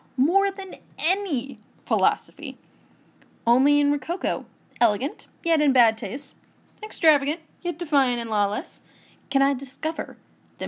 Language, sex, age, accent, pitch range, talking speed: English, female, 10-29, American, 230-310 Hz, 120 wpm